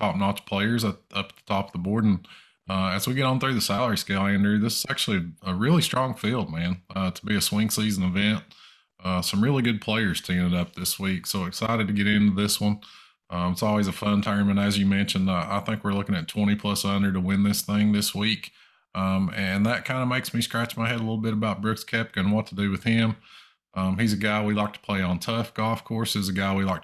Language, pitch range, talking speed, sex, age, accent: English, 95-110 Hz, 255 wpm, male, 20-39, American